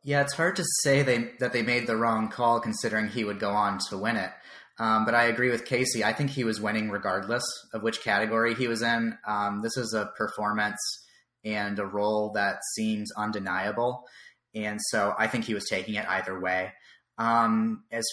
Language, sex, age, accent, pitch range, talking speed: English, male, 30-49, American, 105-120 Hz, 200 wpm